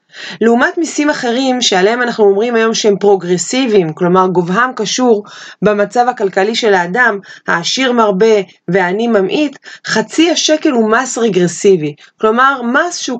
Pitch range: 200-270 Hz